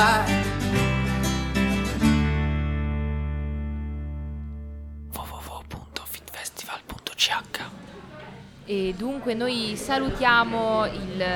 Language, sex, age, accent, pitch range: Italian, female, 20-39, native, 175-240 Hz